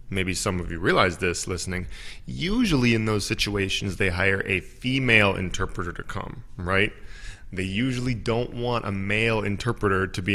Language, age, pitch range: English, 20-39, 95-110 Hz